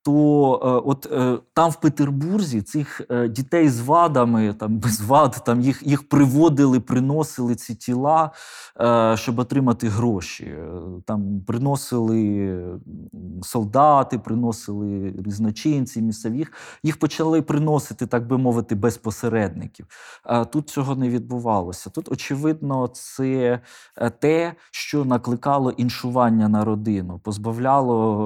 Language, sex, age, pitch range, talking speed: Ukrainian, male, 20-39, 105-130 Hz, 105 wpm